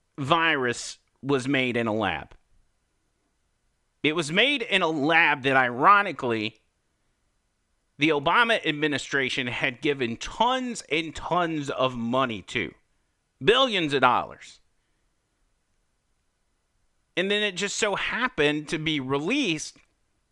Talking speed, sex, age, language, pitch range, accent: 110 wpm, male, 40-59, English, 125-195 Hz, American